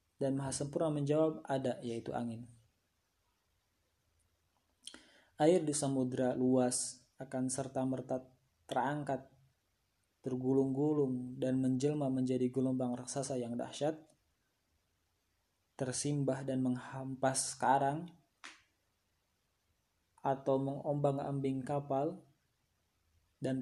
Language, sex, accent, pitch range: Indonesian, male, native, 115-135 Hz